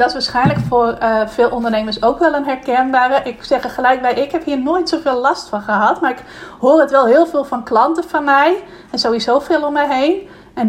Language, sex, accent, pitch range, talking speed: Dutch, female, Dutch, 235-275 Hz, 235 wpm